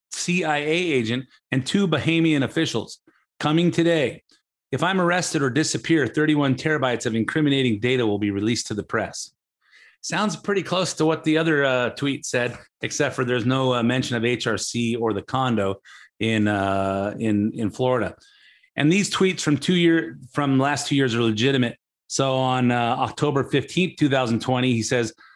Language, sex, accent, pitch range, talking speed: English, male, American, 125-160 Hz, 165 wpm